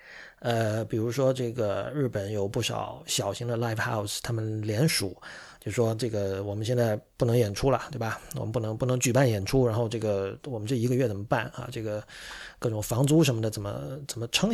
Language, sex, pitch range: Chinese, male, 110-140 Hz